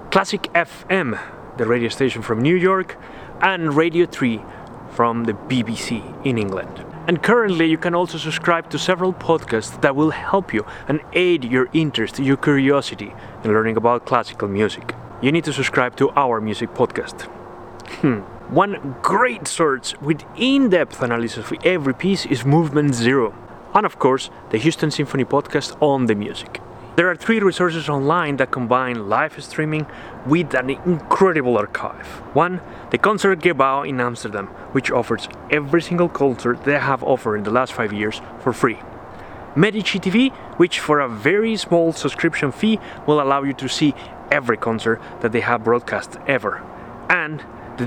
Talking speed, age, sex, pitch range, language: 160 wpm, 30-49, male, 120-170 Hz, English